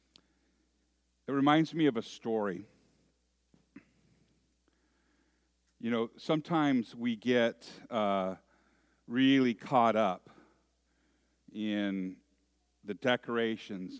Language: English